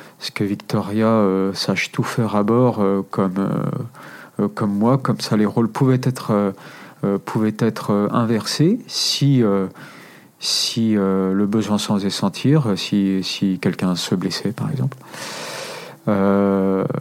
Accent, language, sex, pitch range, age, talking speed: French, French, male, 100-135 Hz, 40-59, 145 wpm